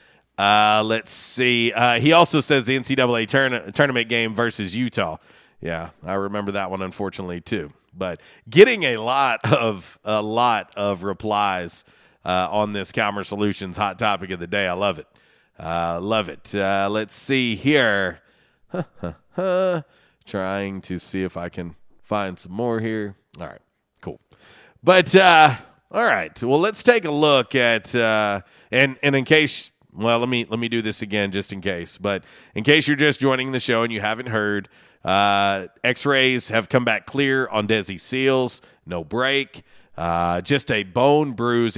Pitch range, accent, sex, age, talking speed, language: 100-125 Hz, American, male, 30-49, 170 wpm, English